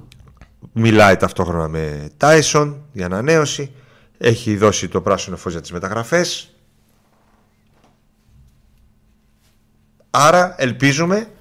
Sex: male